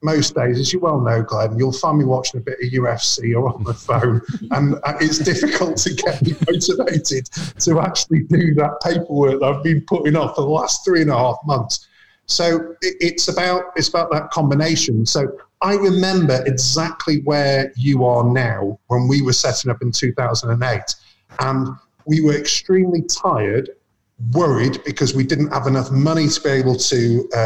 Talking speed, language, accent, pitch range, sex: 190 wpm, English, British, 125-165 Hz, male